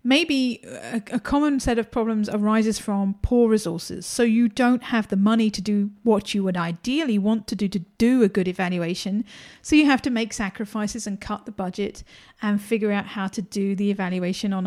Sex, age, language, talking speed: female, 50-69, English, 200 wpm